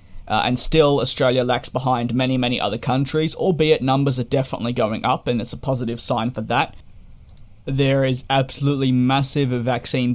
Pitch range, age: 120-135 Hz, 20-39